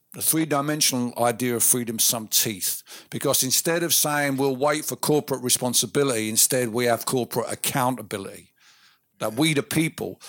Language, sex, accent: English, male, British